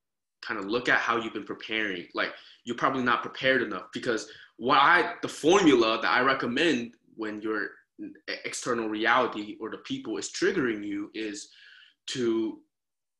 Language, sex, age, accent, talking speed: English, male, 20-39, American, 150 wpm